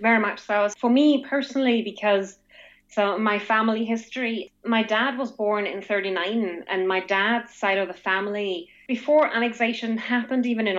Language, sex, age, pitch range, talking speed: English, female, 20-39, 195-235 Hz, 160 wpm